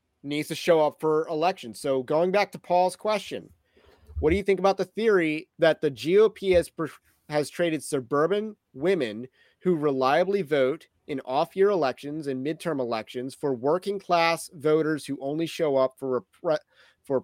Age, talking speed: 30-49, 165 wpm